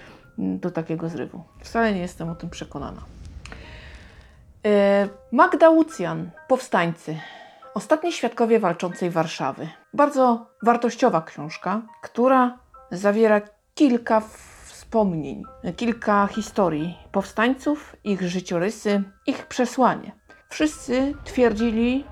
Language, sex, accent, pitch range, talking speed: Polish, female, native, 180-235 Hz, 85 wpm